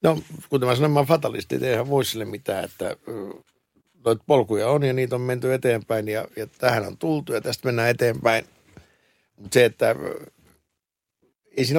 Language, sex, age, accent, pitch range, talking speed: Finnish, male, 60-79, native, 105-130 Hz, 170 wpm